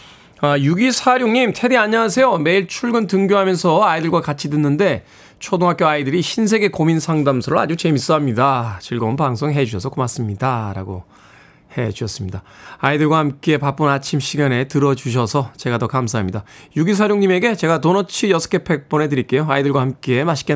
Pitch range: 130-180 Hz